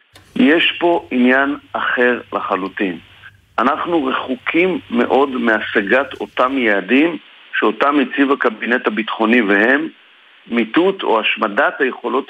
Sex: male